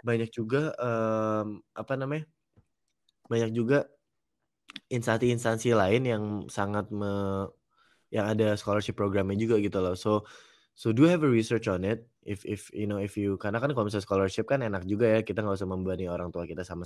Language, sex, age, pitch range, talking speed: Indonesian, male, 20-39, 95-115 Hz, 175 wpm